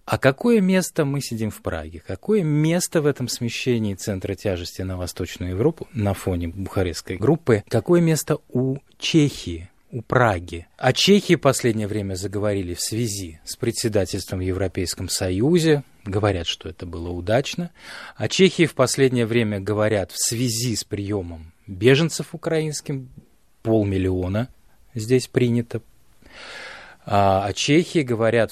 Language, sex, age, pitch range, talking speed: Russian, male, 20-39, 95-140 Hz, 135 wpm